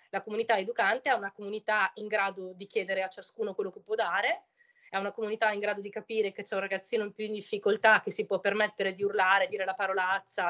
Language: Italian